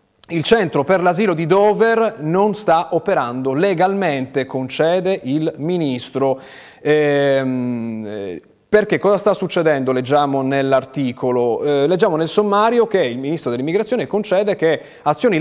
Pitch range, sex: 135-180 Hz, male